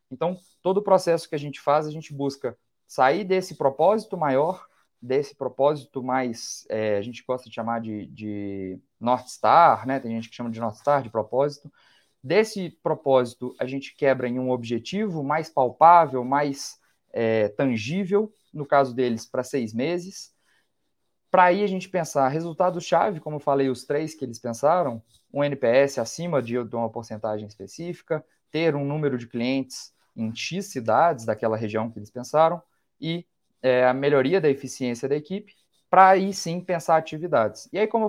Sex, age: male, 20-39